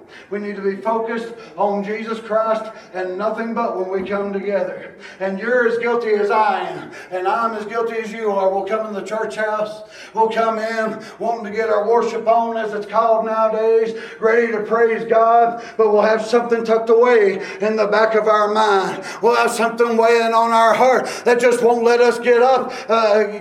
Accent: American